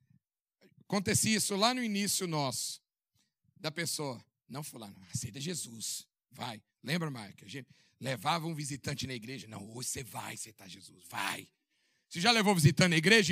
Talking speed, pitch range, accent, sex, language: 160 wpm, 155-265 Hz, Brazilian, male, Portuguese